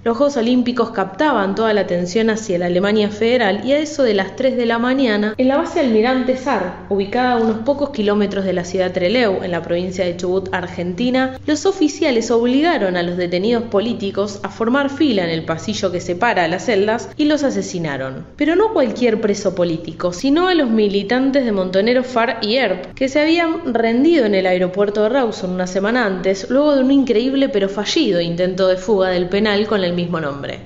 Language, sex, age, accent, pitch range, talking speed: Spanish, female, 20-39, Argentinian, 185-255 Hz, 200 wpm